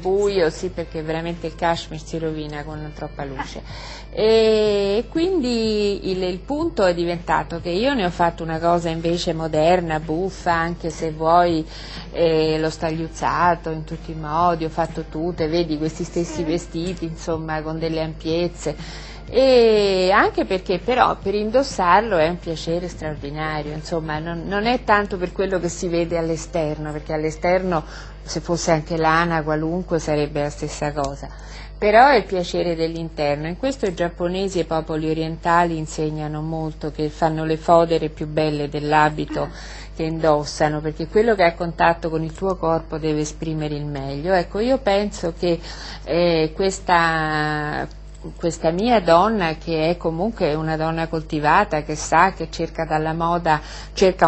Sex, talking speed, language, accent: female, 155 wpm, Italian, native